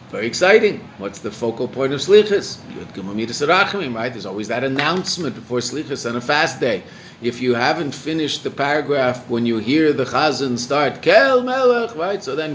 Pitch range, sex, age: 115-155 Hz, male, 50-69